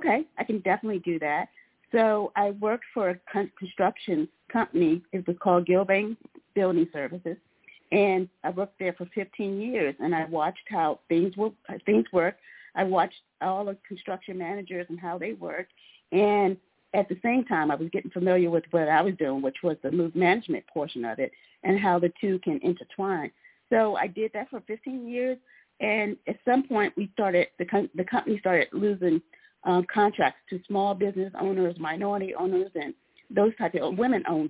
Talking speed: 175 wpm